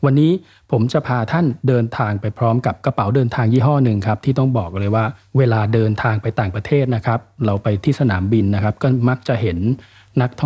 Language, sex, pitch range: Thai, male, 105-140 Hz